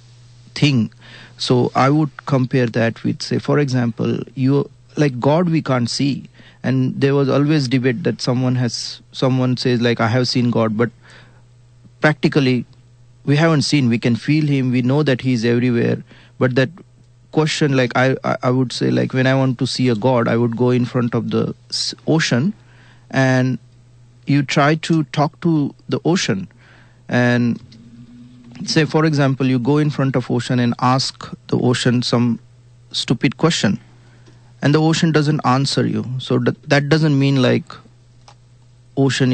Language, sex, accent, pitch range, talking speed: English, male, Indian, 120-135 Hz, 165 wpm